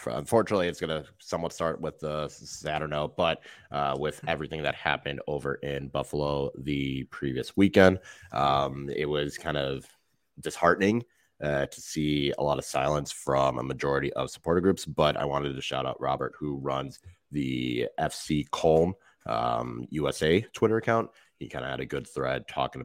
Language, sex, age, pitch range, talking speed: English, male, 30-49, 70-80 Hz, 175 wpm